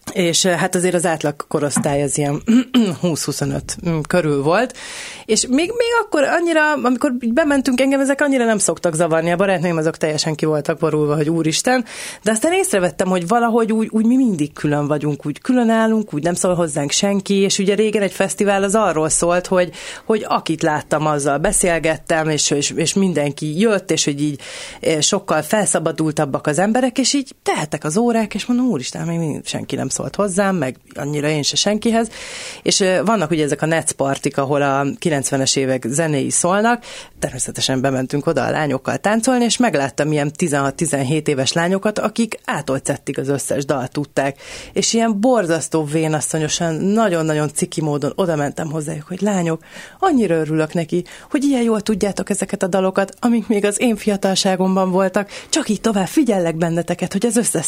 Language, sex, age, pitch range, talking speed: Hungarian, female, 30-49, 150-215 Hz, 165 wpm